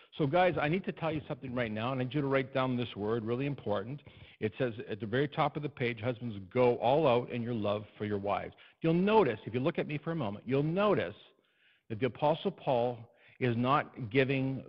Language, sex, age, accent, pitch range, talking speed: English, male, 50-69, American, 115-145 Hz, 240 wpm